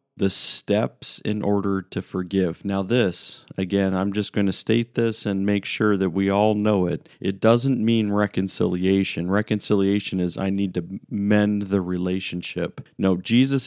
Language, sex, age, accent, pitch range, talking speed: English, male, 40-59, American, 95-115 Hz, 165 wpm